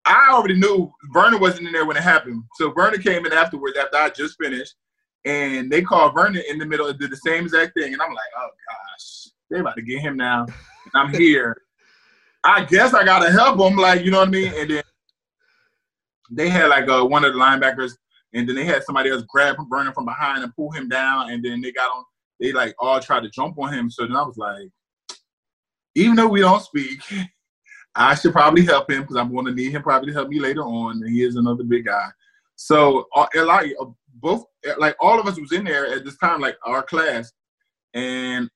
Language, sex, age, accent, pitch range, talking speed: English, male, 20-39, American, 130-180 Hz, 230 wpm